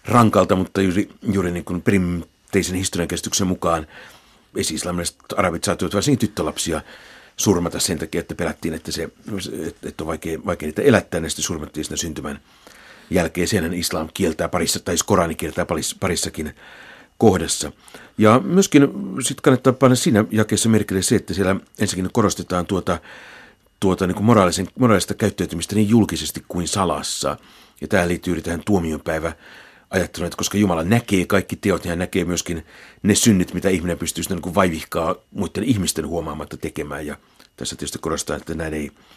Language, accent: Finnish, native